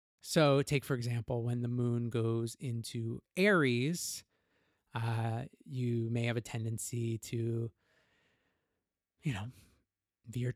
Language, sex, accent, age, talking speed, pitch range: English, male, American, 20-39, 115 wpm, 115-140 Hz